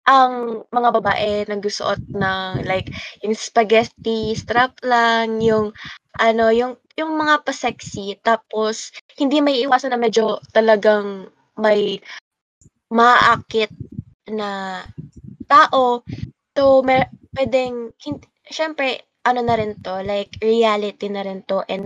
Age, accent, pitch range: 20-39, native, 205-250 Hz